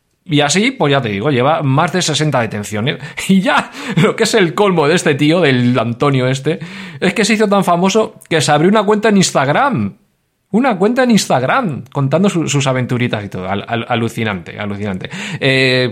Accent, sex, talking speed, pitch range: Spanish, male, 195 wpm, 110-155 Hz